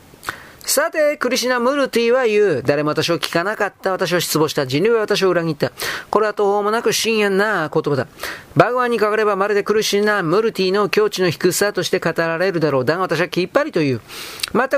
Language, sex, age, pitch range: Japanese, male, 40-59, 170-230 Hz